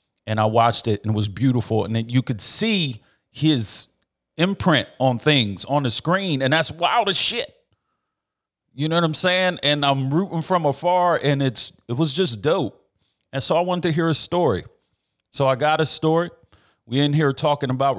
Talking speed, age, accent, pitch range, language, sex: 195 wpm, 40-59, American, 115-145 Hz, English, male